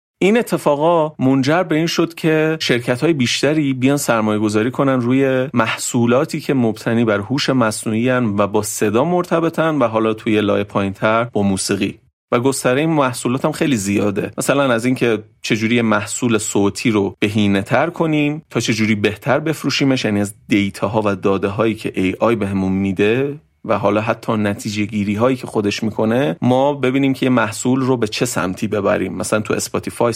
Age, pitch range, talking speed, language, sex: 30-49, 105-140 Hz, 165 wpm, Persian, male